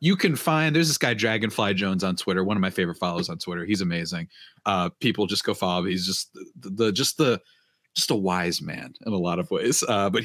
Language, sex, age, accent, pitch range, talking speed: English, male, 30-49, American, 105-160 Hz, 245 wpm